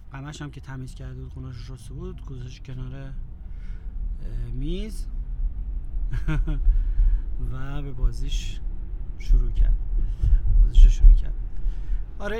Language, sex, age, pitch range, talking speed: Persian, male, 30-49, 100-150 Hz, 90 wpm